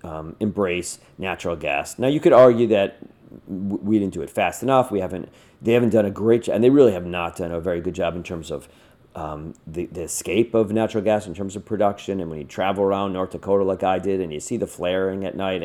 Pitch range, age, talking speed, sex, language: 95-125 Hz, 40-59, 250 wpm, male, English